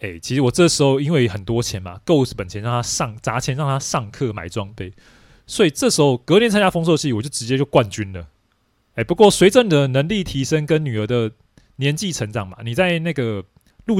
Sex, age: male, 20-39